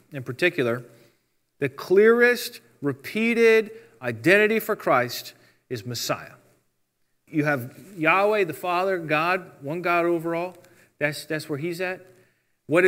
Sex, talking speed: male, 115 wpm